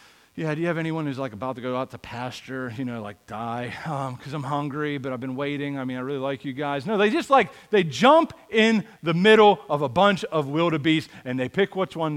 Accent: American